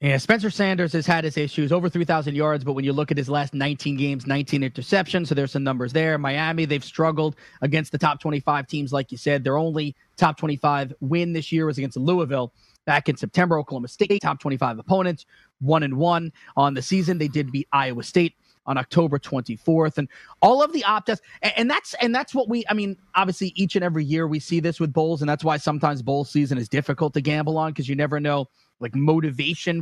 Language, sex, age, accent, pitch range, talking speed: English, male, 30-49, American, 145-175 Hz, 220 wpm